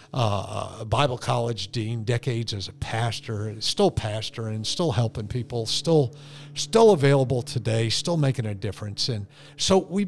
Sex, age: male, 50-69